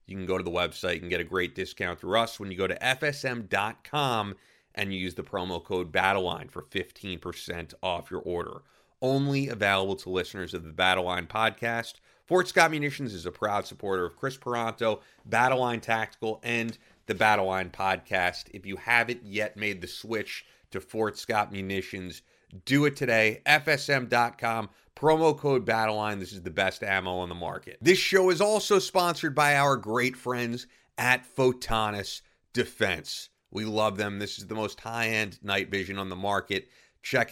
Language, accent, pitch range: English, American, 95-120 Hz